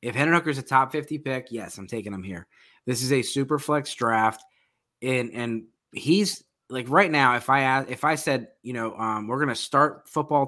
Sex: male